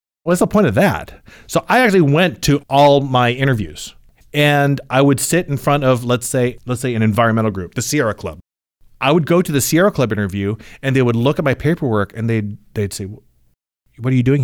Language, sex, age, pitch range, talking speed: English, male, 40-59, 105-130 Hz, 220 wpm